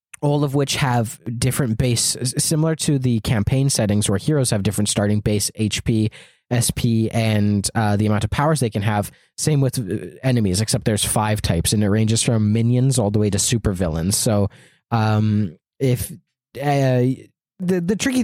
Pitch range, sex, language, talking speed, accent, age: 105-130 Hz, male, English, 175 wpm, American, 20-39